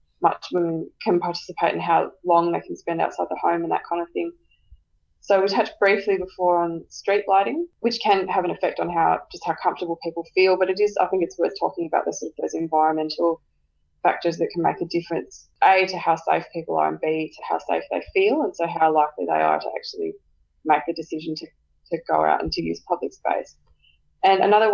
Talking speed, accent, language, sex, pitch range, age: 220 wpm, Australian, English, female, 165-195 Hz, 20-39